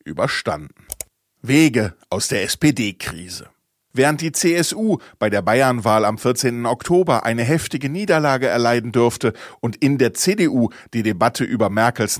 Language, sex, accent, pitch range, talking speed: German, male, German, 110-145 Hz, 135 wpm